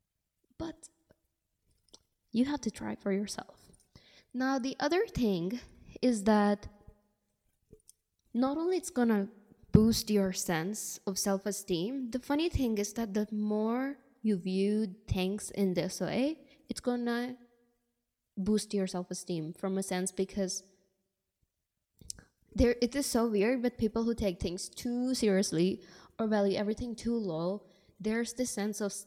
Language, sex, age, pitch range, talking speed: English, female, 10-29, 180-225 Hz, 135 wpm